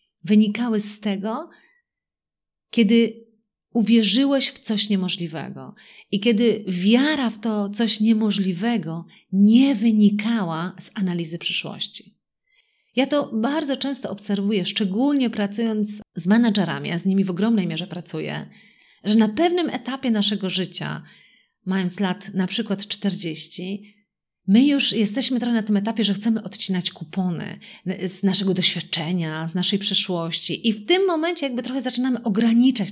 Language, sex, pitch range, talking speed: Polish, female, 195-250 Hz, 130 wpm